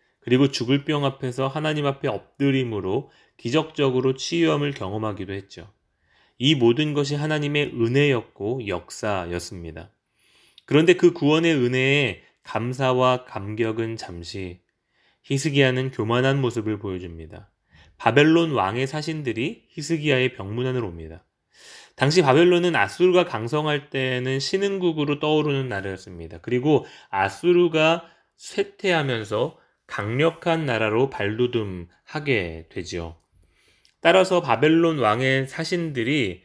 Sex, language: male, Korean